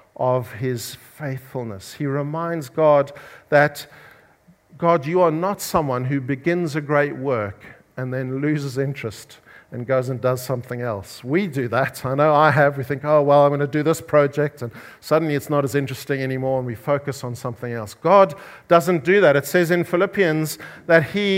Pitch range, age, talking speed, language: 140-185 Hz, 50-69, 190 wpm, English